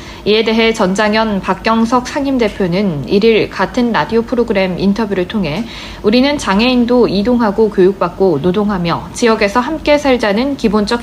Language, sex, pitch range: Korean, female, 190-245 Hz